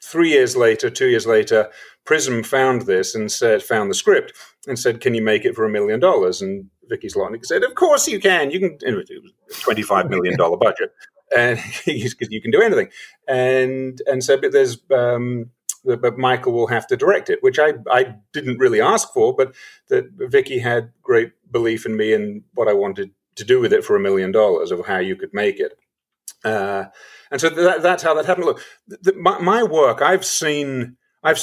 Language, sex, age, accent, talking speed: English, male, 40-59, British, 200 wpm